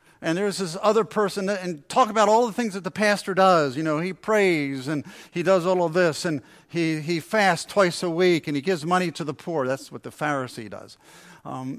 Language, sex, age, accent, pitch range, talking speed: English, male, 50-69, American, 155-205 Hz, 235 wpm